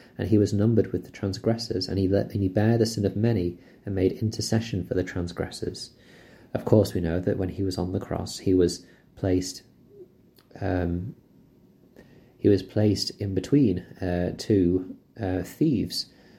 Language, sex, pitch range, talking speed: English, male, 90-110 Hz, 170 wpm